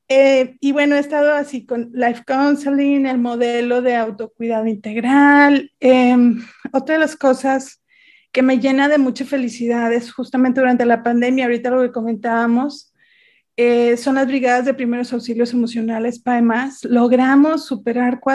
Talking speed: 145 wpm